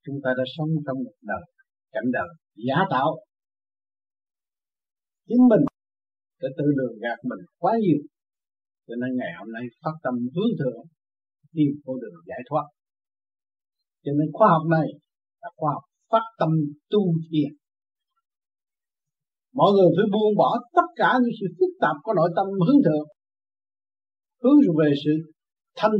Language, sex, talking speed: Vietnamese, male, 150 wpm